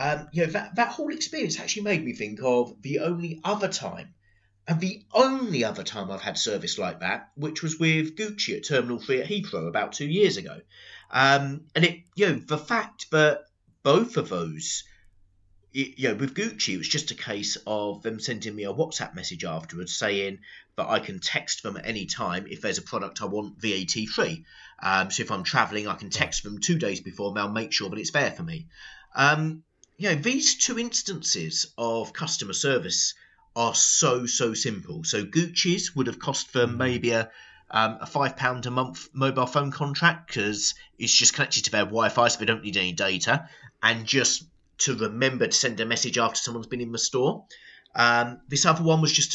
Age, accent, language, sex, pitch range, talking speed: 30-49, British, English, male, 110-165 Hz, 205 wpm